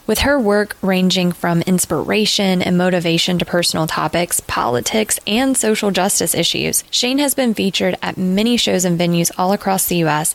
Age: 20-39